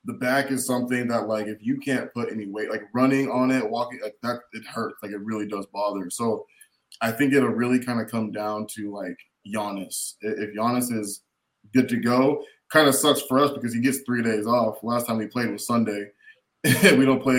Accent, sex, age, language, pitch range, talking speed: American, male, 20-39, English, 105-125 Hz, 215 wpm